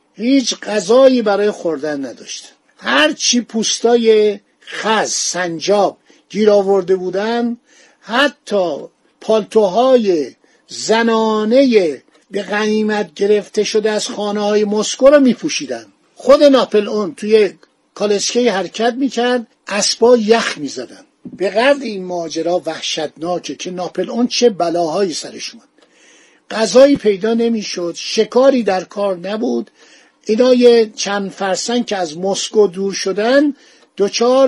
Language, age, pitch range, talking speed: Persian, 50-69, 185-240 Hz, 105 wpm